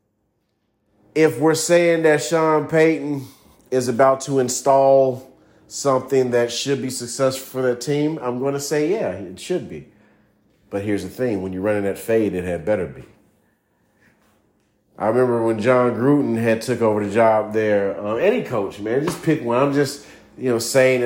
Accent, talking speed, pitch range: American, 175 wpm, 125-155 Hz